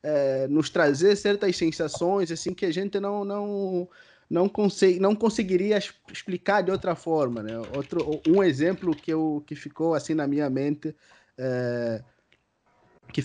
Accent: Brazilian